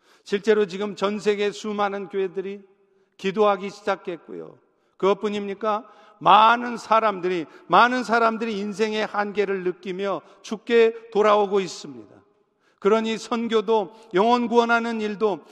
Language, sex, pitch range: Korean, male, 170-230 Hz